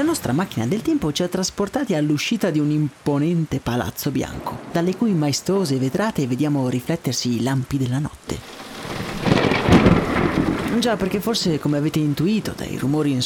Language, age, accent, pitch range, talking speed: Italian, 30-49, native, 130-190 Hz, 150 wpm